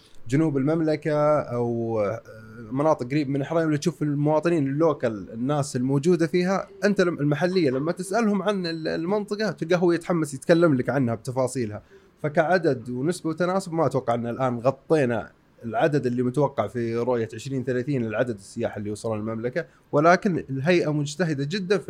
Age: 20-39